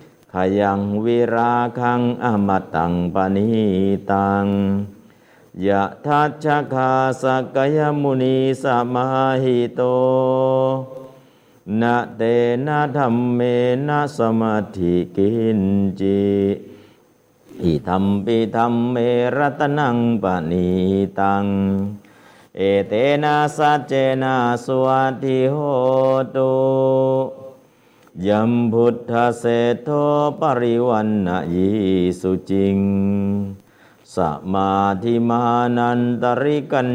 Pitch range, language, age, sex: 100-130 Hz, Thai, 50-69, male